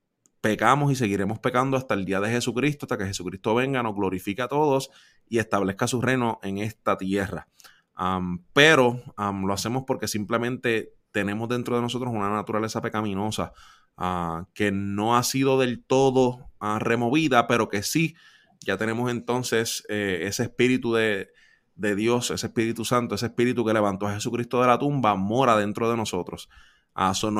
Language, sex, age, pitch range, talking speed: Spanish, male, 20-39, 100-120 Hz, 165 wpm